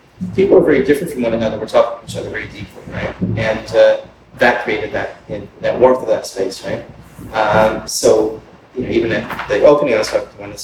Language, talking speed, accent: English, 235 wpm, American